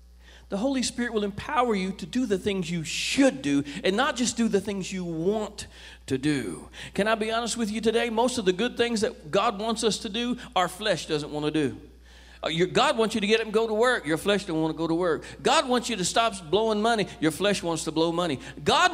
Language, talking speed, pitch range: English, 250 wpm, 155-235 Hz